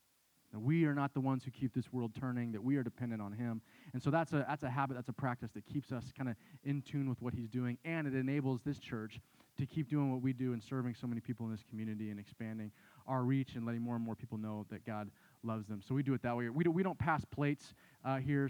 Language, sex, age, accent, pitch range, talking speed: English, male, 20-39, American, 120-160 Hz, 280 wpm